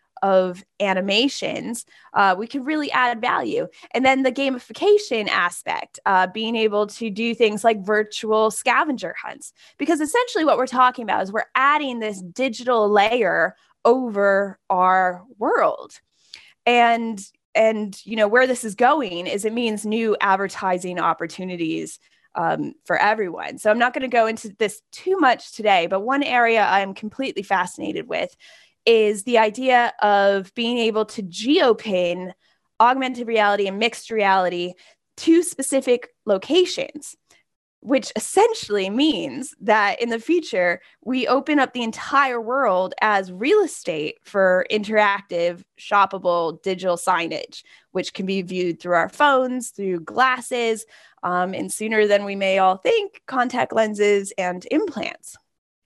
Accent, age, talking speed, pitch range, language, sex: American, 10-29, 140 wpm, 195-255 Hz, English, female